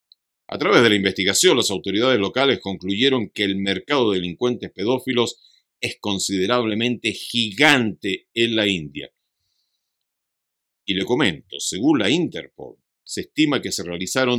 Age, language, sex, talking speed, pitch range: 50-69, Spanish, male, 135 wpm, 120-175 Hz